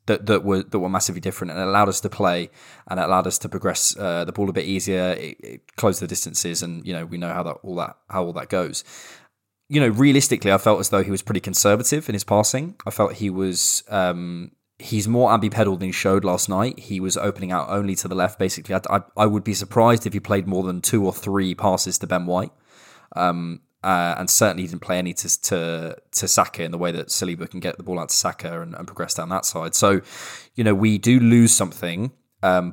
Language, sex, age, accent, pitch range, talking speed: English, male, 20-39, British, 90-105 Hz, 245 wpm